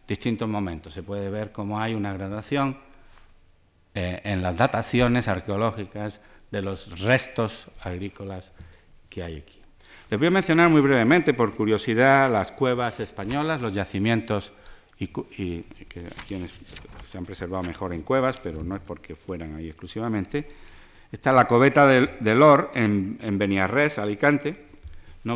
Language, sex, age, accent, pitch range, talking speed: Spanish, male, 50-69, Spanish, 95-125 Hz, 145 wpm